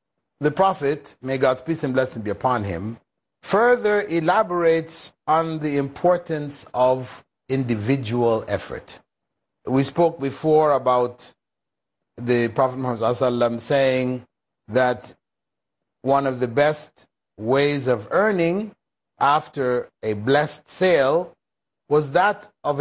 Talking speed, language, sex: 110 wpm, English, male